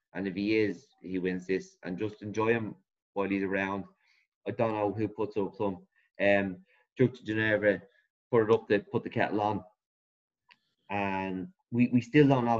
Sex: male